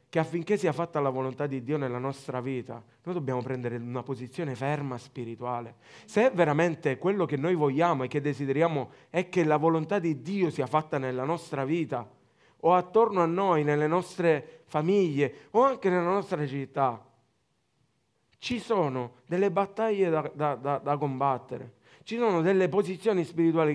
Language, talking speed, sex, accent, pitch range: Italian, 160 wpm, male, native, 135-205 Hz